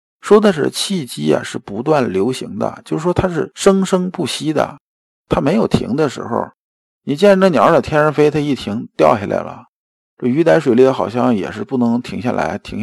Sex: male